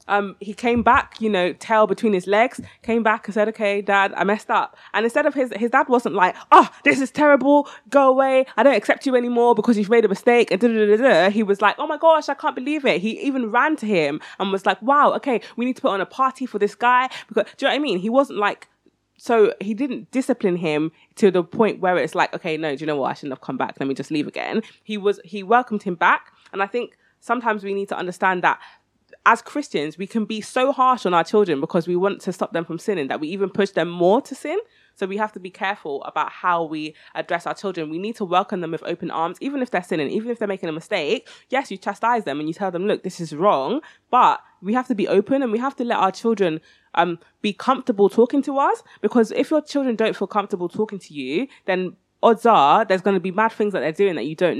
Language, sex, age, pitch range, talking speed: English, female, 20-39, 185-250 Hz, 260 wpm